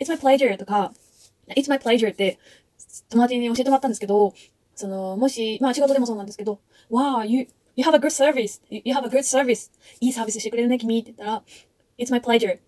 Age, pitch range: 20-39, 205-260 Hz